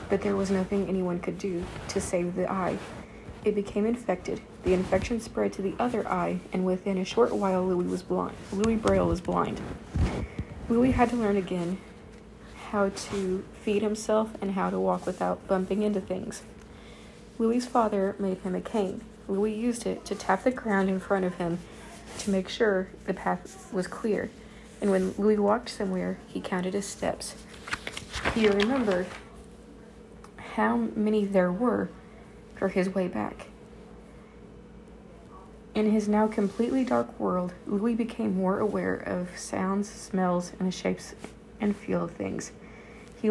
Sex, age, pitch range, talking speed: female, 30-49, 190-225 Hz, 155 wpm